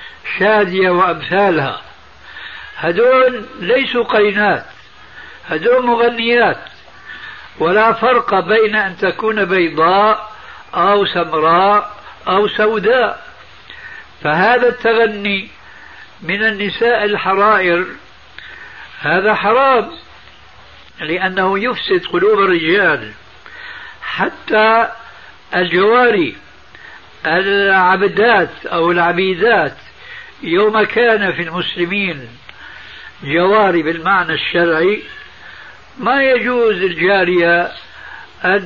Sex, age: male, 60-79